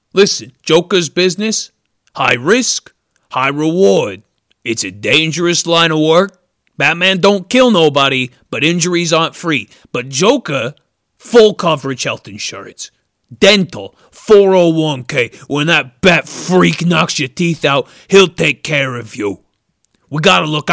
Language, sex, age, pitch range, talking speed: English, male, 30-49, 135-180 Hz, 130 wpm